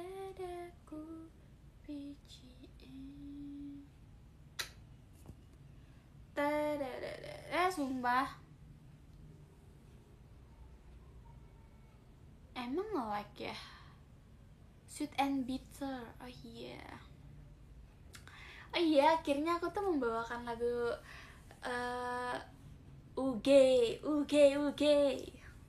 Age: 10-29